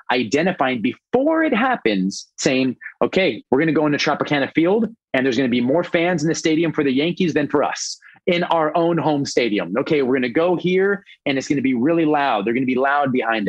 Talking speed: 235 wpm